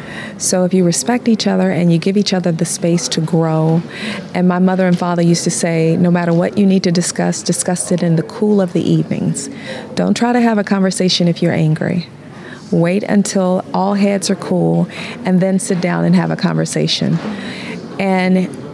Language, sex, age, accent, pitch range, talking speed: English, female, 40-59, American, 170-195 Hz, 200 wpm